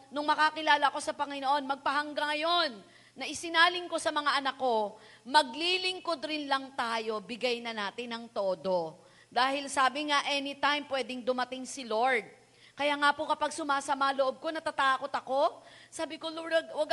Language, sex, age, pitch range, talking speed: Filipino, female, 40-59, 235-295 Hz, 155 wpm